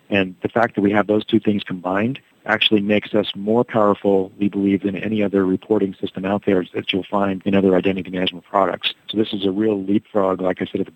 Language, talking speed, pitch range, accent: English, 235 wpm, 95-115 Hz, American